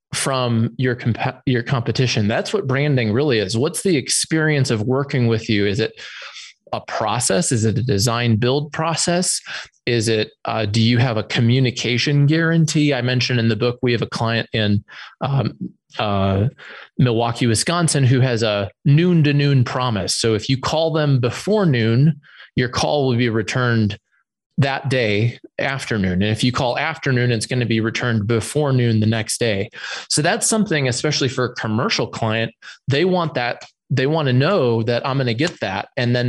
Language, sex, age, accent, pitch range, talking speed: English, male, 20-39, American, 115-145 Hz, 180 wpm